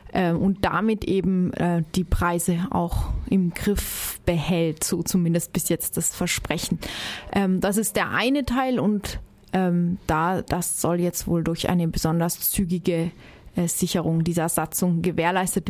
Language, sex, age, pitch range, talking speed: German, female, 20-39, 180-220 Hz, 130 wpm